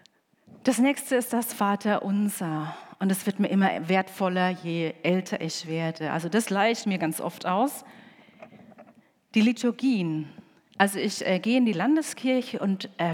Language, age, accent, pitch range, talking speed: German, 40-59, German, 170-220 Hz, 155 wpm